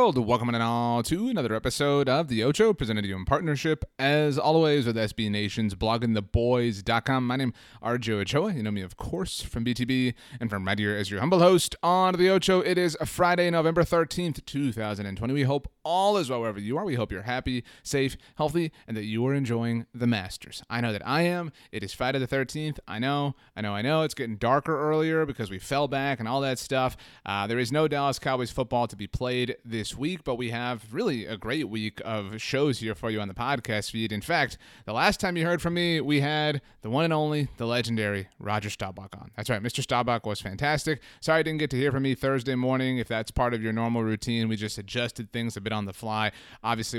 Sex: male